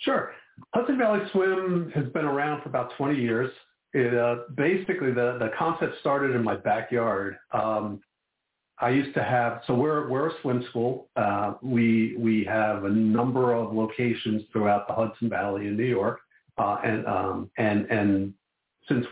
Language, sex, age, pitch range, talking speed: English, male, 50-69, 105-130 Hz, 165 wpm